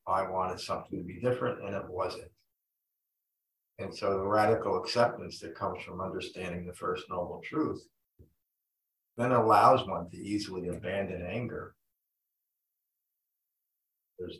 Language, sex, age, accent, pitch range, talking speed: English, male, 50-69, American, 95-125 Hz, 125 wpm